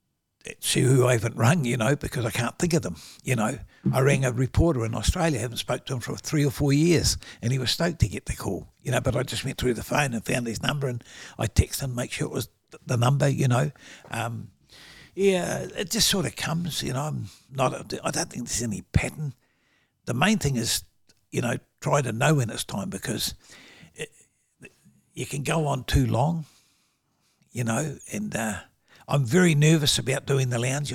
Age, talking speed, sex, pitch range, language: 60-79, 215 wpm, male, 120-145 Hz, English